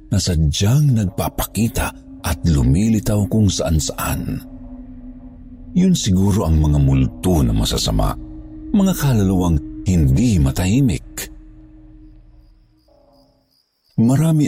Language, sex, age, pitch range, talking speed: Filipino, male, 50-69, 70-110 Hz, 80 wpm